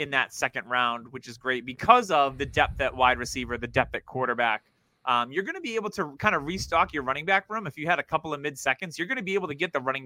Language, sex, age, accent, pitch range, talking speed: English, male, 20-39, American, 125-195 Hz, 290 wpm